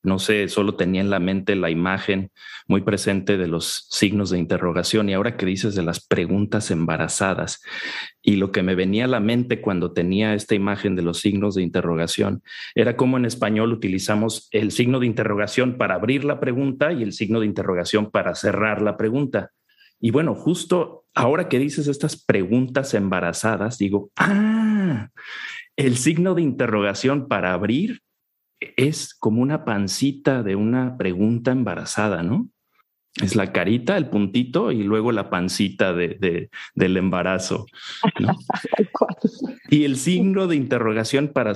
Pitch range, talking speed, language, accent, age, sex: 100-130 Hz, 155 wpm, Spanish, Mexican, 40-59, male